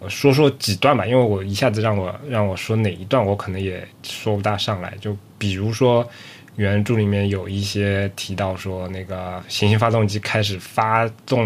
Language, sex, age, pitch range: Chinese, male, 20-39, 95-115 Hz